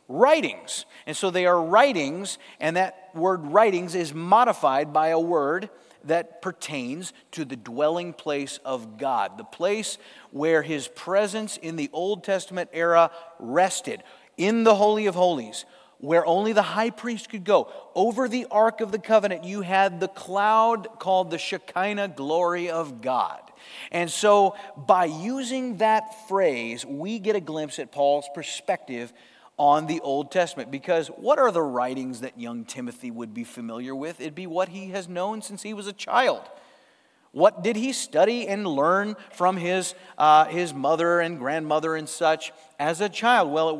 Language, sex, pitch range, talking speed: English, male, 155-215 Hz, 165 wpm